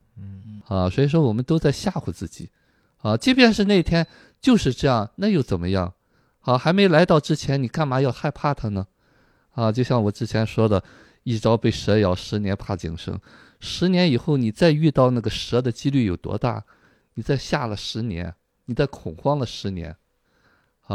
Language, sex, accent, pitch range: Chinese, male, native, 95-140 Hz